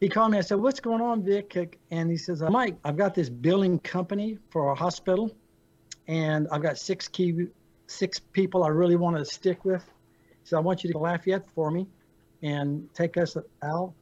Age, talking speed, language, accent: 60-79, 205 wpm, English, American